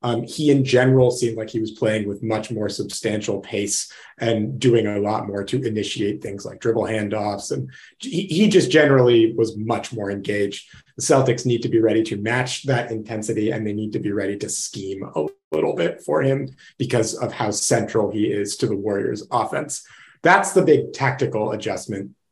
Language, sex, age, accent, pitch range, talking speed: English, male, 30-49, American, 110-130 Hz, 195 wpm